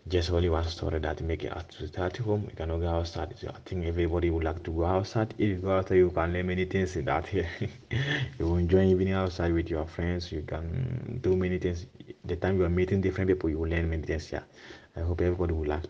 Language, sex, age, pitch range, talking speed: Italian, male, 30-49, 80-95 Hz, 260 wpm